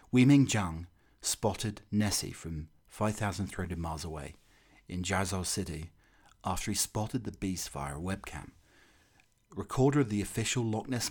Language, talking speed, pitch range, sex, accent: English, 135 wpm, 85-105 Hz, male, British